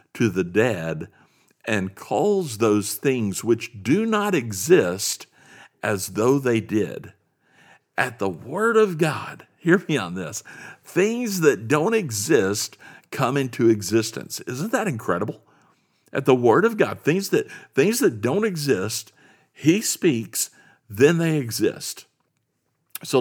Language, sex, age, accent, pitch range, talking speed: English, male, 50-69, American, 105-145 Hz, 130 wpm